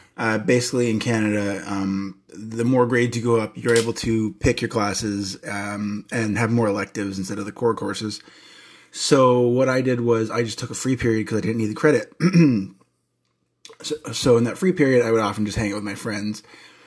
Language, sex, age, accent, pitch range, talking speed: English, male, 20-39, American, 110-120 Hz, 210 wpm